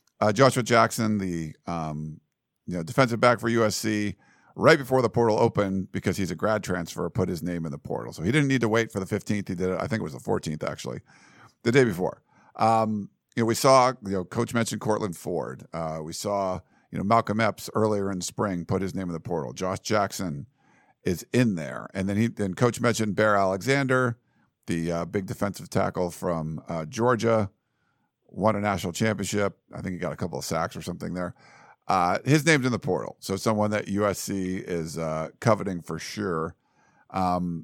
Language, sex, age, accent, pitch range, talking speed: English, male, 50-69, American, 95-120 Hz, 205 wpm